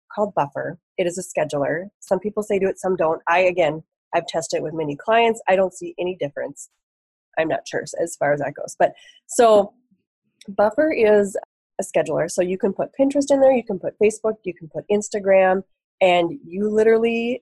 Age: 20-39